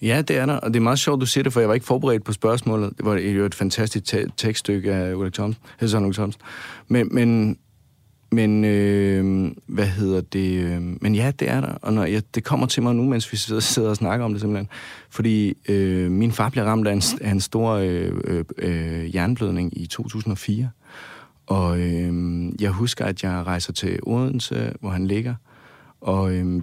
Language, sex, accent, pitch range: Danish, male, native, 95-115 Hz